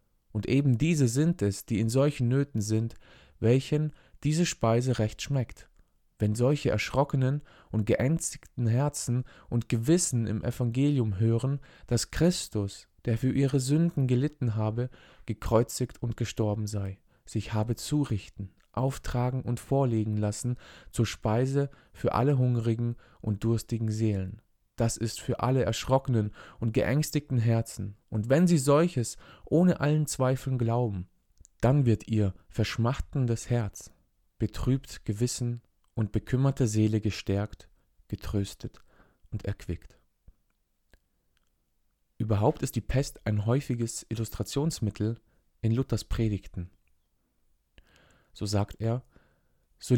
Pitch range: 105-130 Hz